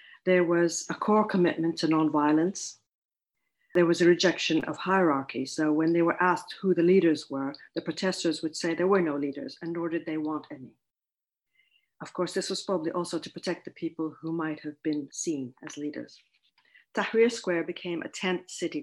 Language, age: English, 50-69